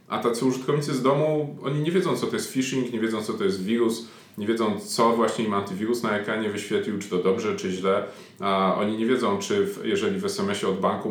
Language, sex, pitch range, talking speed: Polish, male, 100-130 Hz, 230 wpm